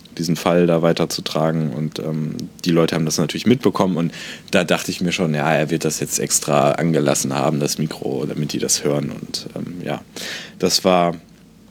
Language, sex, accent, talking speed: German, male, German, 190 wpm